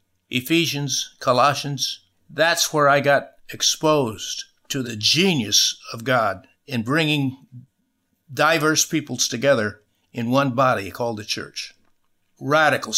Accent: American